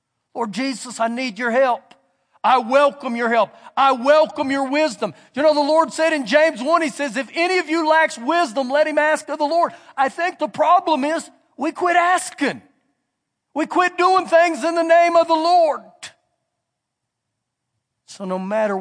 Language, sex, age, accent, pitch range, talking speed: English, male, 50-69, American, 210-310 Hz, 180 wpm